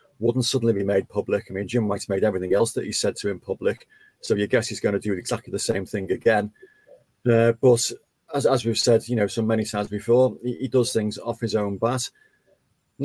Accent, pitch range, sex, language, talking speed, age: British, 105-130 Hz, male, English, 245 wpm, 30-49